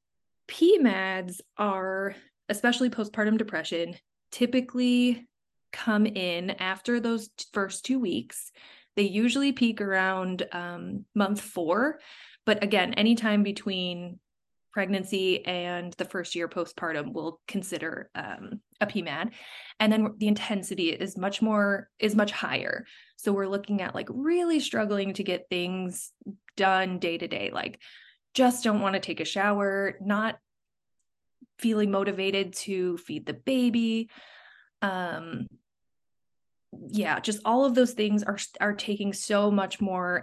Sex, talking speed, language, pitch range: female, 130 wpm, English, 185-220 Hz